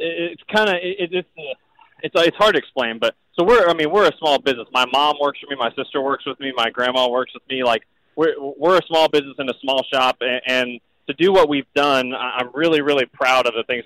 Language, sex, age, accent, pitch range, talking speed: English, male, 20-39, American, 125-150 Hz, 245 wpm